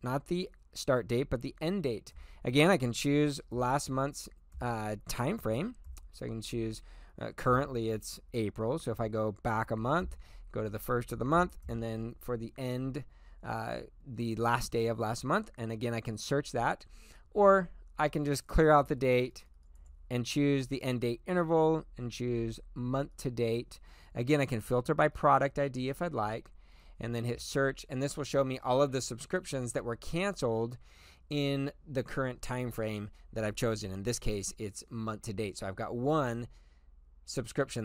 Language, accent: English, American